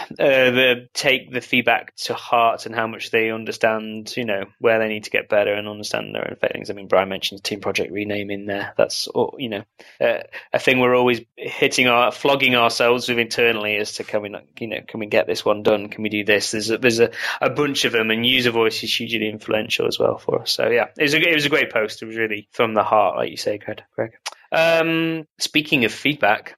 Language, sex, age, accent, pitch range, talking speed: English, male, 20-39, British, 110-135 Hz, 245 wpm